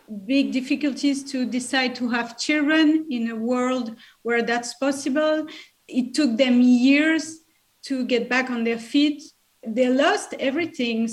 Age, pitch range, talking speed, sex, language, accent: 40-59, 225-265 Hz, 140 wpm, female, English, French